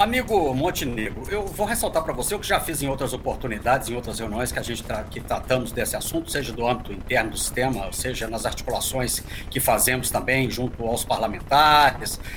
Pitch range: 125-190 Hz